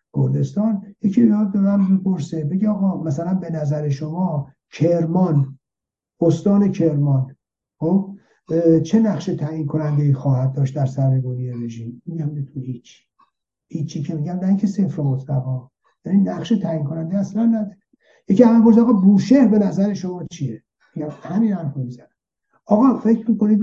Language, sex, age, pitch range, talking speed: Persian, male, 60-79, 145-195 Hz, 145 wpm